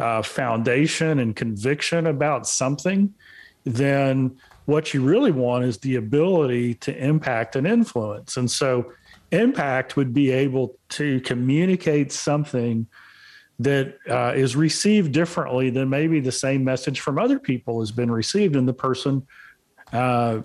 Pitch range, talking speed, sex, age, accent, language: 125-160 Hz, 140 wpm, male, 40-59, American, English